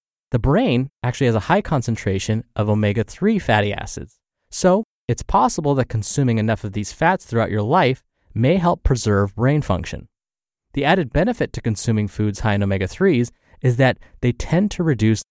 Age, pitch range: 20-39, 105-145 Hz